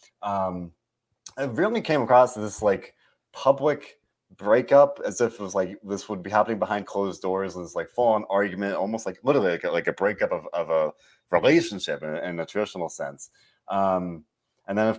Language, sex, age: English, male, 30-49